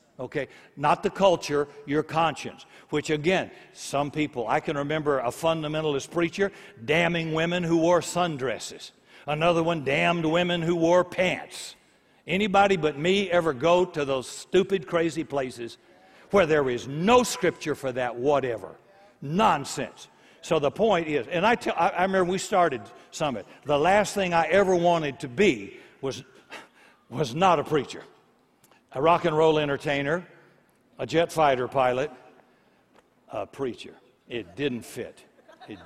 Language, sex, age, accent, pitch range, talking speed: English, male, 60-79, American, 140-175 Hz, 145 wpm